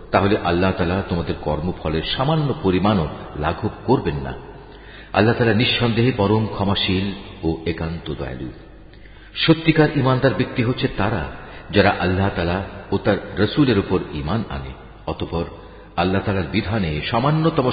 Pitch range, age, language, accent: 95-135 Hz, 50-69, Bengali, native